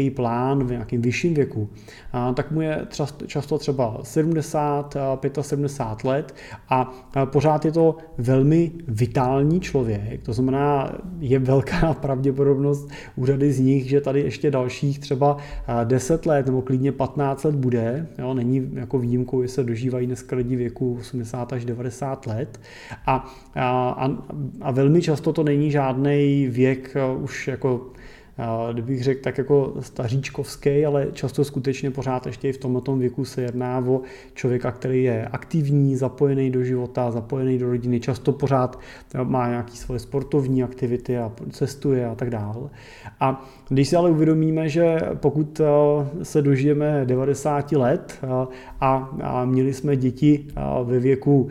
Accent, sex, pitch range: native, male, 130-145 Hz